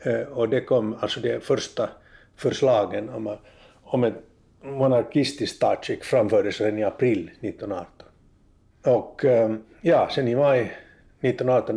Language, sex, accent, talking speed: Swedish, male, Finnish, 105 wpm